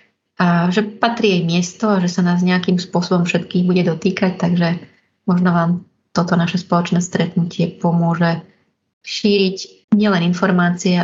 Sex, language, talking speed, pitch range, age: female, Slovak, 135 wpm, 170-190 Hz, 30-49